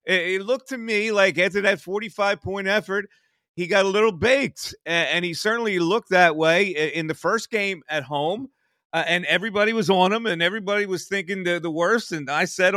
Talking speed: 200 wpm